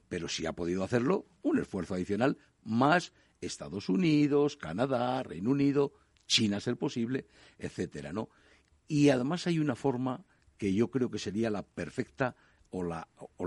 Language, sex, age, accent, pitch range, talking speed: Spanish, male, 60-79, Spanish, 95-135 Hz, 145 wpm